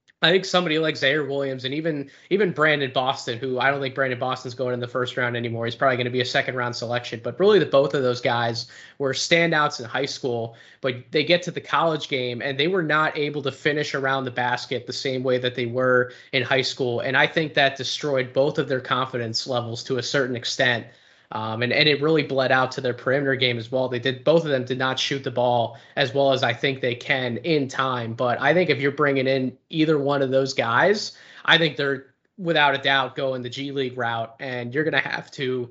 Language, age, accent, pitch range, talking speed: English, 20-39, American, 125-145 Hz, 245 wpm